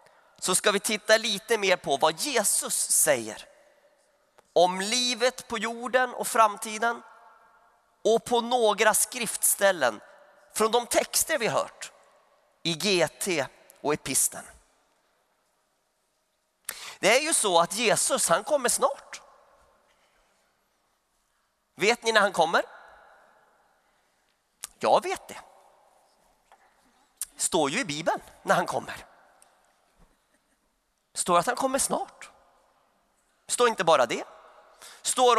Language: Swedish